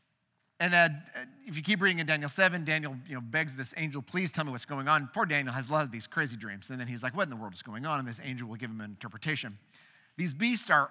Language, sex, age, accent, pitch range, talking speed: English, male, 50-69, American, 135-180 Hz, 285 wpm